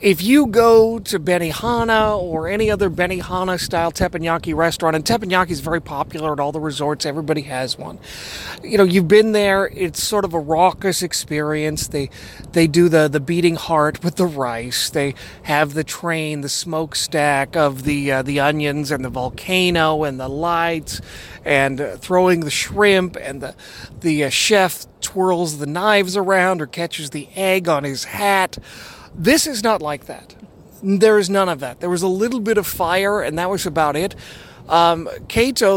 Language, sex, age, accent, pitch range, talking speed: English, male, 30-49, American, 150-195 Hz, 180 wpm